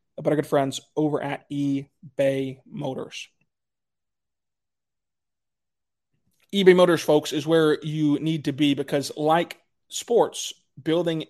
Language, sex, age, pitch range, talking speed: English, male, 20-39, 145-165 Hz, 110 wpm